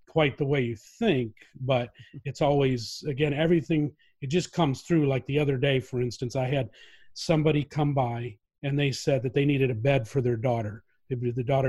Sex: male